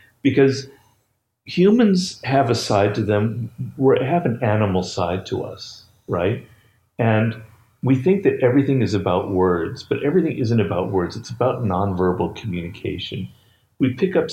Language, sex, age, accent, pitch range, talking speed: English, male, 50-69, American, 95-130 Hz, 145 wpm